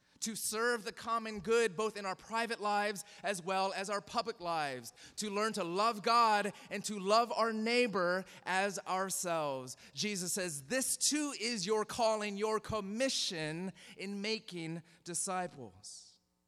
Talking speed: 145 wpm